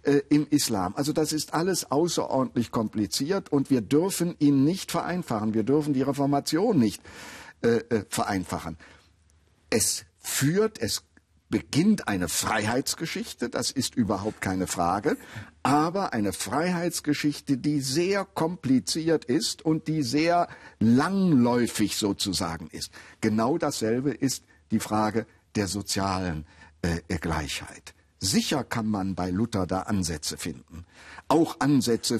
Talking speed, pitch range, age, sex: 120 wpm, 95-145 Hz, 60-79, male